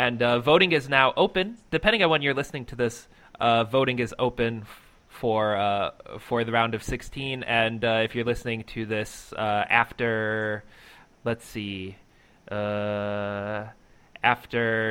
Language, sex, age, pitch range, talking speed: English, male, 20-39, 115-140 Hz, 150 wpm